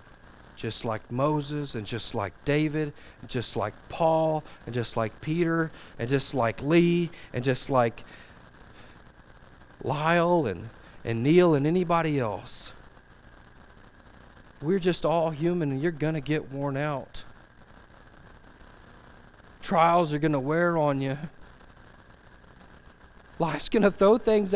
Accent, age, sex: American, 40-59, male